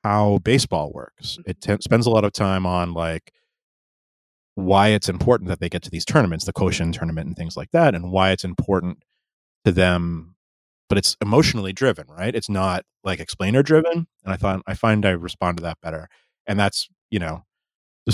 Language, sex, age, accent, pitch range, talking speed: English, male, 30-49, American, 85-105 Hz, 195 wpm